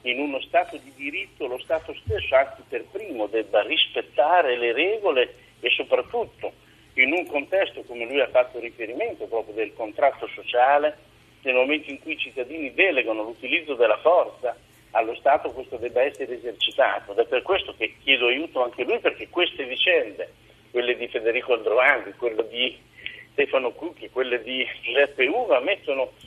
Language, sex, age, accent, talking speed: Italian, male, 50-69, native, 160 wpm